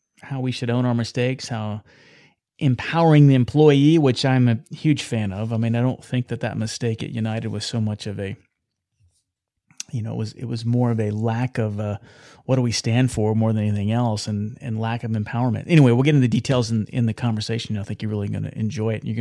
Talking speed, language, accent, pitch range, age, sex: 235 wpm, English, American, 110-135 Hz, 30-49, male